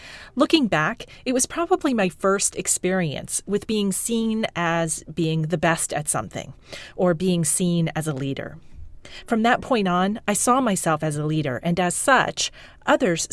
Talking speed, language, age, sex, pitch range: 165 wpm, English, 40-59, female, 165-235 Hz